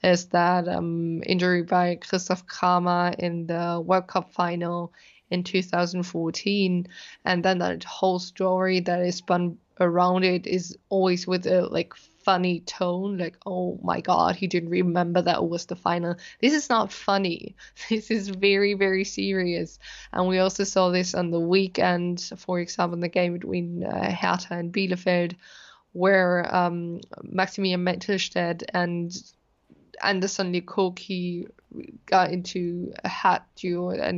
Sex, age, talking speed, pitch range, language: female, 20-39, 145 wpm, 175-190 Hz, English